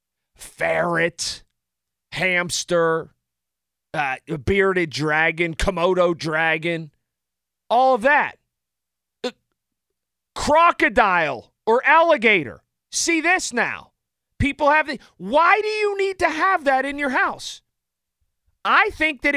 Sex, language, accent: male, English, American